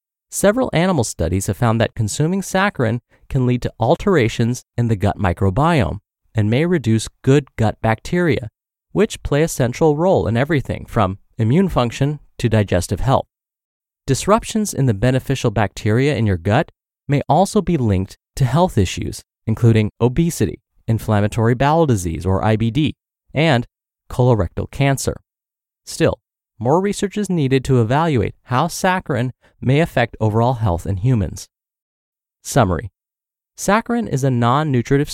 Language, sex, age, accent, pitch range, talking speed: English, male, 30-49, American, 110-150 Hz, 135 wpm